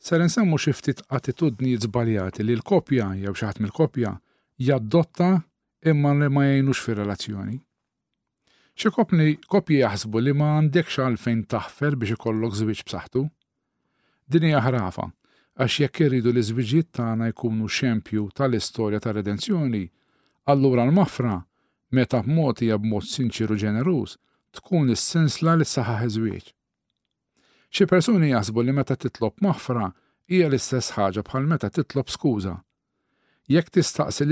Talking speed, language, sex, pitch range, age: 120 wpm, English, male, 110-150 Hz, 50-69